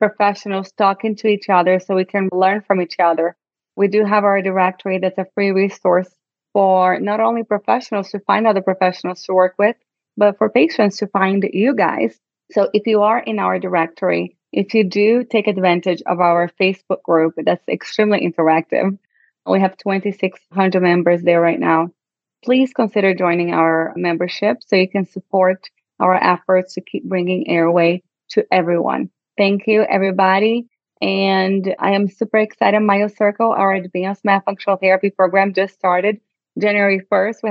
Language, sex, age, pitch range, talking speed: English, female, 30-49, 185-210 Hz, 160 wpm